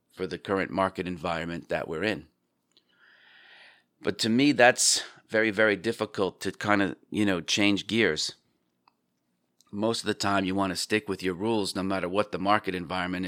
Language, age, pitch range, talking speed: English, 40-59, 90-105 Hz, 175 wpm